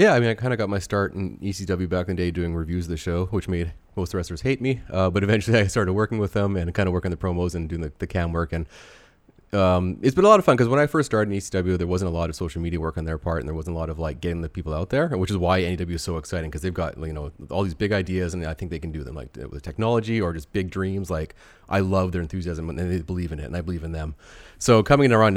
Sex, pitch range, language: male, 85-100 Hz, English